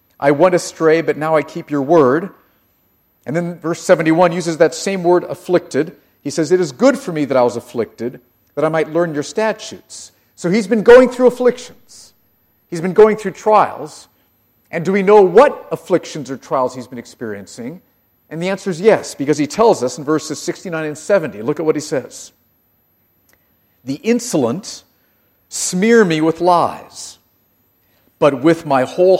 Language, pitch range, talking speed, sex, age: English, 140-200 Hz, 175 wpm, male, 50-69